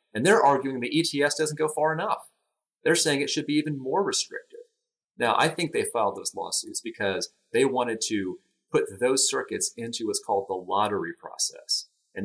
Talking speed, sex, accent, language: 185 wpm, male, American, English